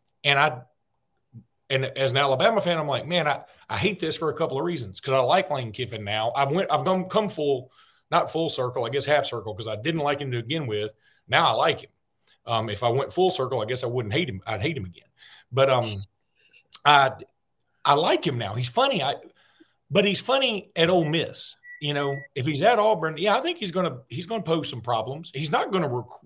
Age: 40-59